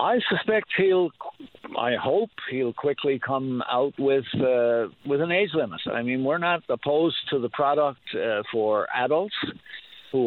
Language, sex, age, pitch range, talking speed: English, male, 60-79, 110-140 Hz, 160 wpm